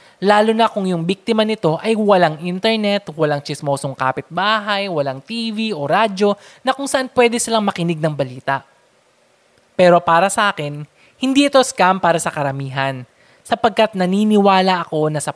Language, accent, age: Filipino, native, 20-39